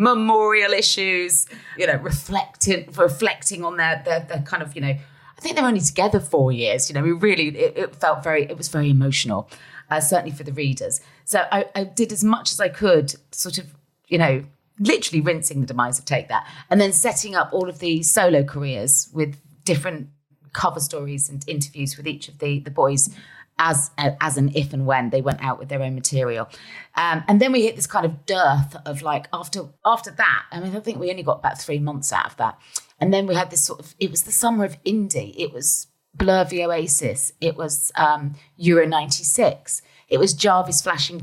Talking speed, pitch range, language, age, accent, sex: 210 wpm, 145-195 Hz, English, 30-49, British, female